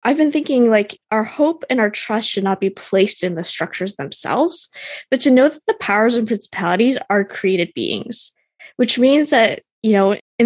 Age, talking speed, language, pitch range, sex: 20-39, 195 wpm, English, 195-245 Hz, female